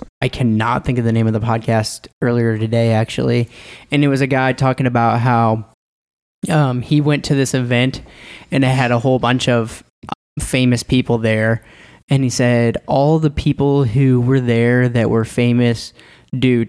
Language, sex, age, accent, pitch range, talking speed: English, male, 20-39, American, 115-130 Hz, 175 wpm